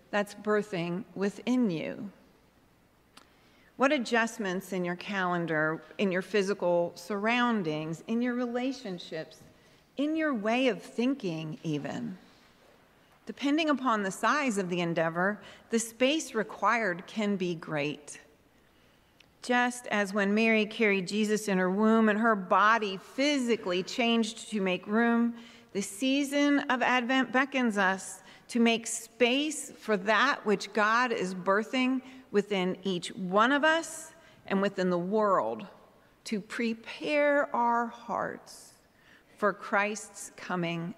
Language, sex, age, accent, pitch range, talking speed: English, female, 40-59, American, 190-250 Hz, 120 wpm